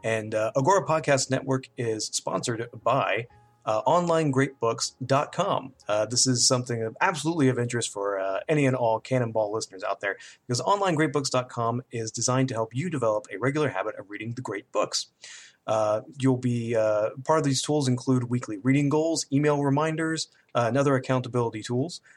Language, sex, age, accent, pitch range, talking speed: English, male, 30-49, American, 115-140 Hz, 170 wpm